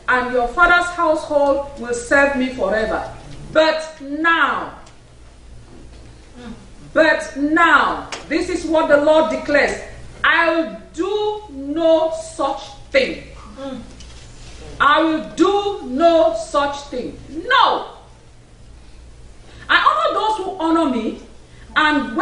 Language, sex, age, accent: English, female, 40-59, Nigerian